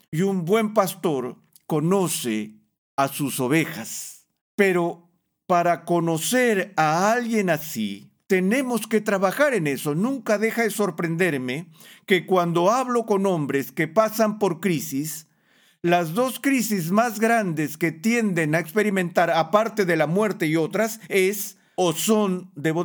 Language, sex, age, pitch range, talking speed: Spanish, male, 50-69, 155-210 Hz, 135 wpm